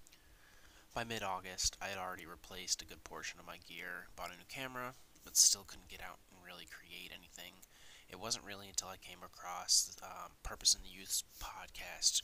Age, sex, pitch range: 20-39, male, 85-100 Hz